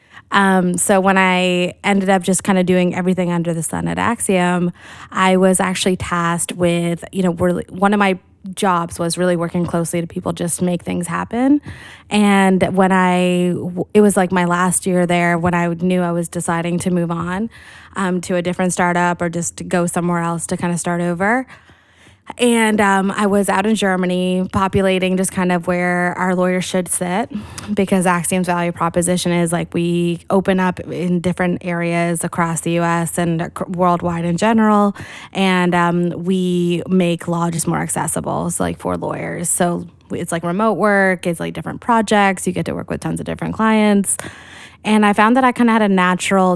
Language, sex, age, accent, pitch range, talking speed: English, female, 20-39, American, 170-190 Hz, 190 wpm